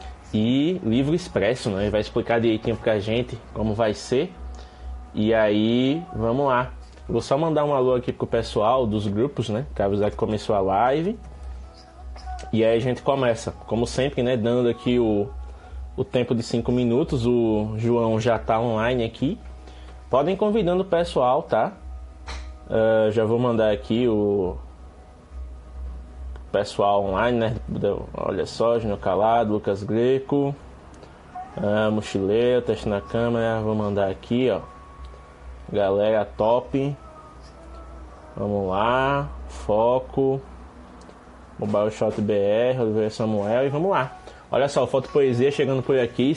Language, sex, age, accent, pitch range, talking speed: Portuguese, male, 20-39, Brazilian, 95-125 Hz, 135 wpm